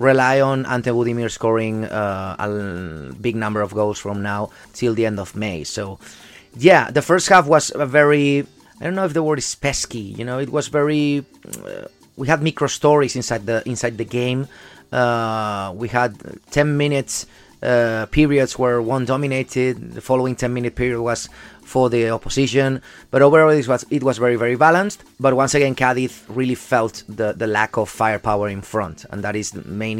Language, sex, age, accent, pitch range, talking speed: English, male, 30-49, Spanish, 105-130 Hz, 190 wpm